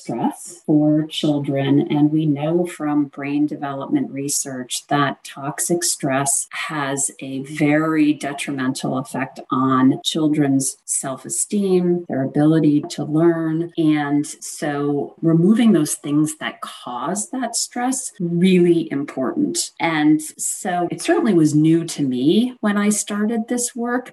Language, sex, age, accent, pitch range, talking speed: English, female, 40-59, American, 150-220 Hz, 120 wpm